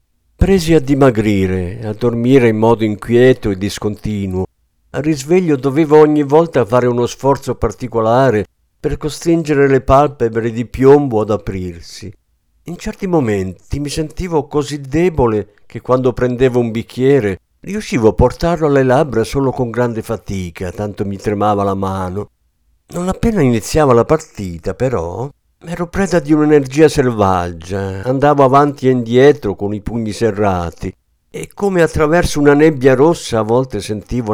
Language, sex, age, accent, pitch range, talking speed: Italian, male, 50-69, native, 100-140 Hz, 140 wpm